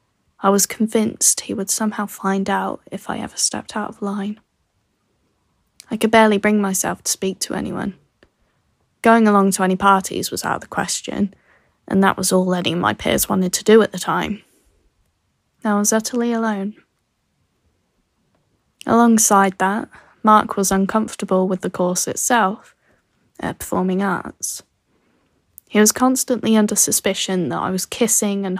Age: 10-29